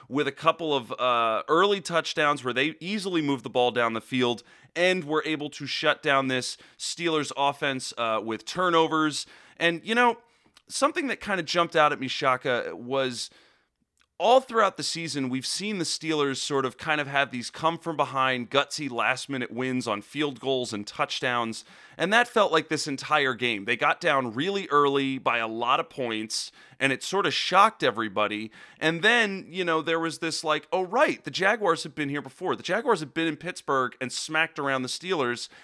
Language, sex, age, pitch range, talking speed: English, male, 30-49, 130-170 Hz, 190 wpm